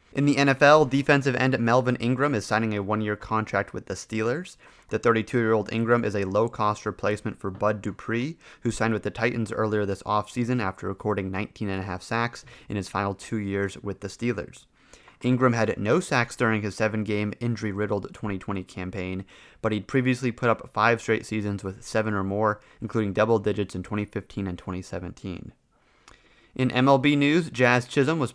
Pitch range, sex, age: 100-120 Hz, male, 30-49